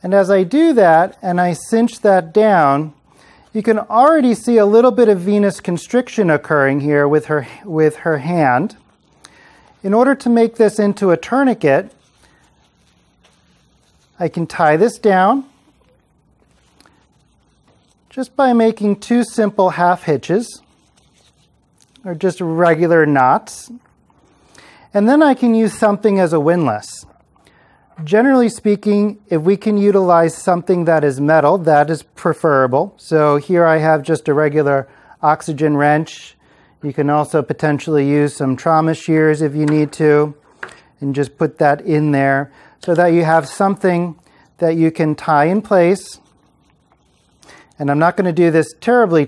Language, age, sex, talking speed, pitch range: English, 40-59, male, 145 wpm, 150-205 Hz